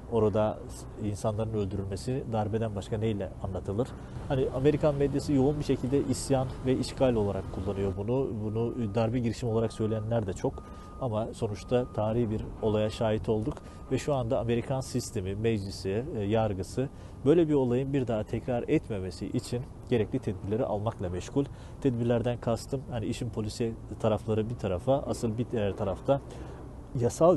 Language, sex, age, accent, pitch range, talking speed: Turkish, male, 40-59, native, 105-130 Hz, 145 wpm